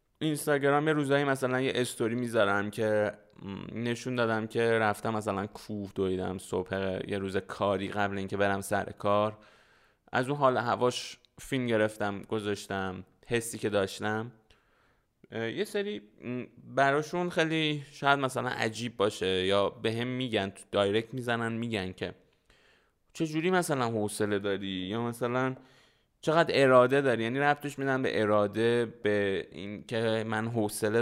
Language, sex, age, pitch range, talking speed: Persian, male, 20-39, 105-125 Hz, 135 wpm